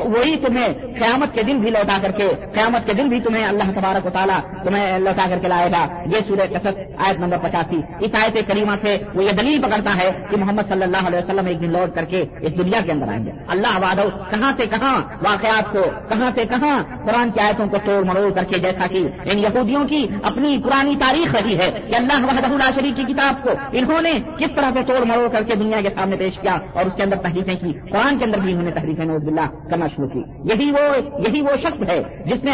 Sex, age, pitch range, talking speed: female, 50-69, 185-250 Hz, 230 wpm